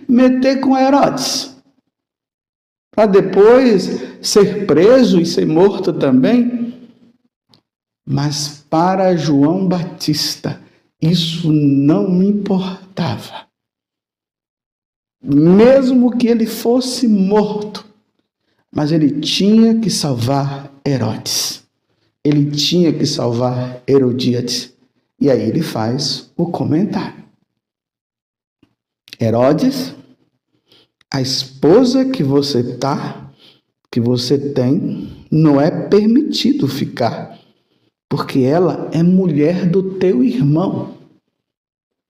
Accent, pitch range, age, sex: Brazilian, 140-215 Hz, 60-79, male